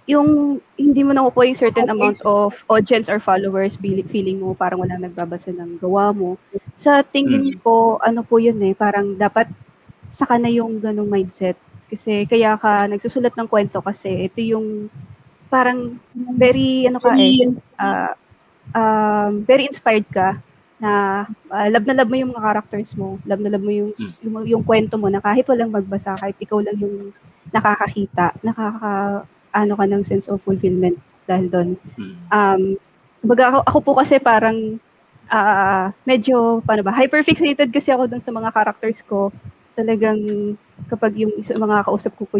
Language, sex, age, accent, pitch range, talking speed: English, female, 20-39, Filipino, 195-230 Hz, 165 wpm